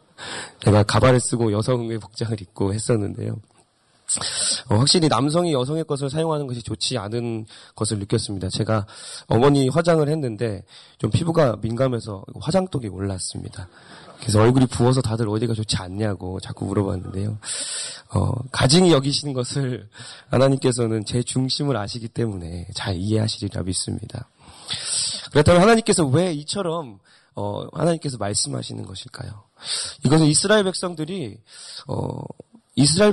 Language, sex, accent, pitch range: Korean, male, native, 110-155 Hz